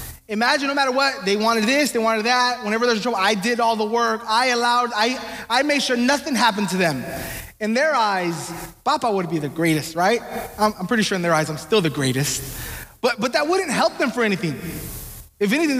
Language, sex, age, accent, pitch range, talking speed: English, male, 20-39, American, 200-245 Hz, 225 wpm